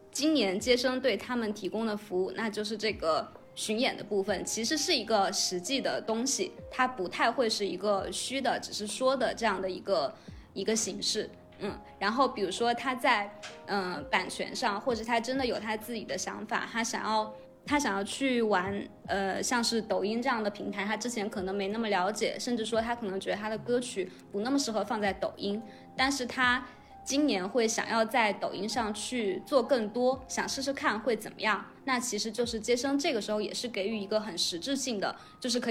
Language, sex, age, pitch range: Chinese, female, 20-39, 205-260 Hz